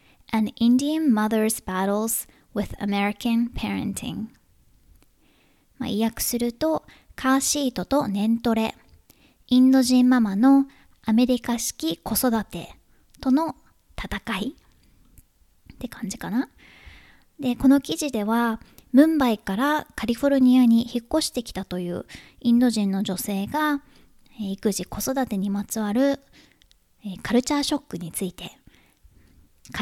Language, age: Japanese, 10-29